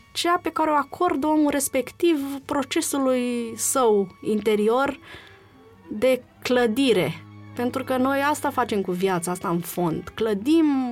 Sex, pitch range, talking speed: female, 205-280 Hz, 125 wpm